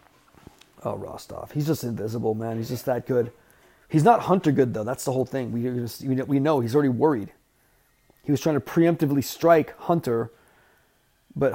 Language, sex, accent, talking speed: English, male, American, 170 wpm